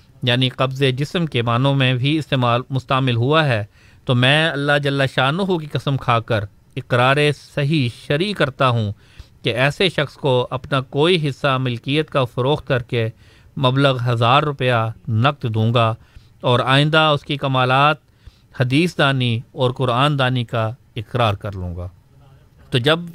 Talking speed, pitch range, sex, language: 155 wpm, 125-145 Hz, male, Urdu